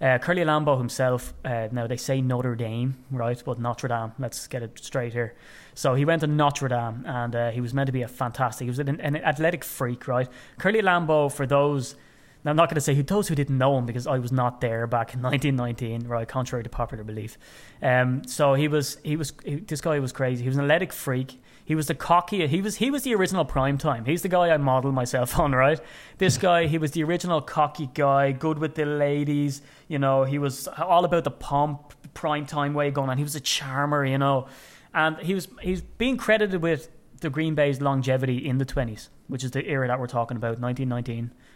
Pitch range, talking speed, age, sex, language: 125-155 Hz, 230 wpm, 20-39, male, English